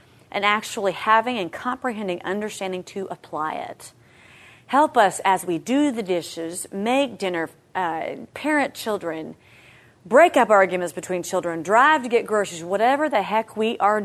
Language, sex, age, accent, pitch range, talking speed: English, female, 30-49, American, 175-220 Hz, 150 wpm